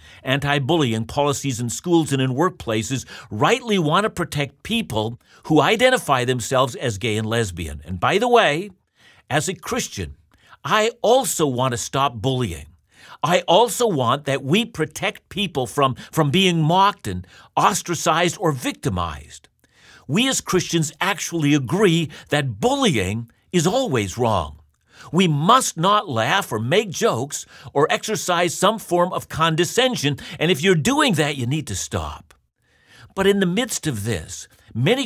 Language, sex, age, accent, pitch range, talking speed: English, male, 50-69, American, 115-185 Hz, 145 wpm